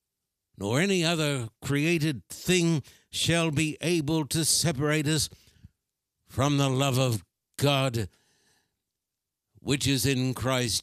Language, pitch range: English, 110-145 Hz